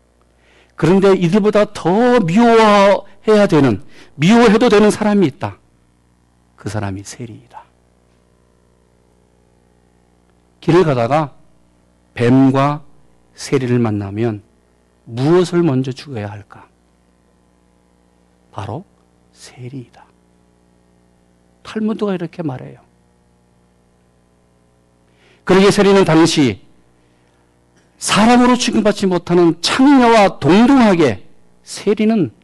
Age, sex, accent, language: 50-69, male, native, Korean